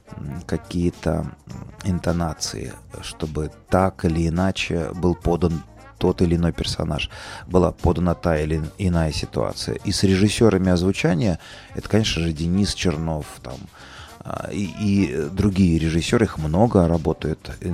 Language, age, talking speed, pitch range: Russian, 30-49, 120 wpm, 85-105 Hz